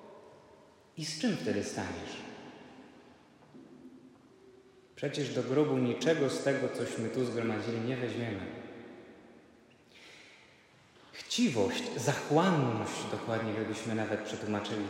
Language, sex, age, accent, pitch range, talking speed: Polish, male, 30-49, native, 125-175 Hz, 90 wpm